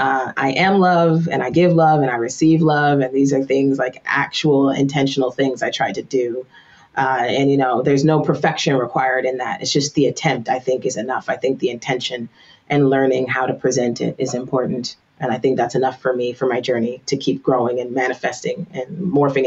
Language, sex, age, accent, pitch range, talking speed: English, female, 30-49, American, 130-160 Hz, 220 wpm